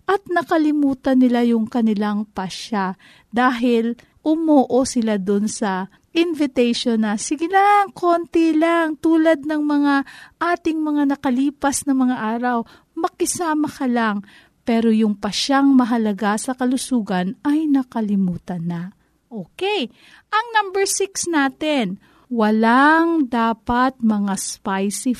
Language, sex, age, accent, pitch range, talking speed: Filipino, female, 40-59, native, 215-280 Hz, 110 wpm